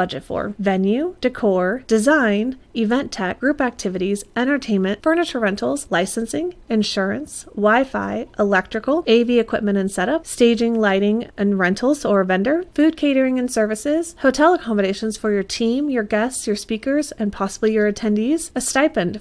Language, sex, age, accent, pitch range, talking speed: English, female, 30-49, American, 200-250 Hz, 140 wpm